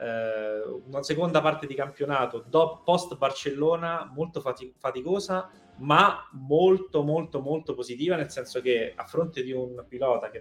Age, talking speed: 20-39, 135 wpm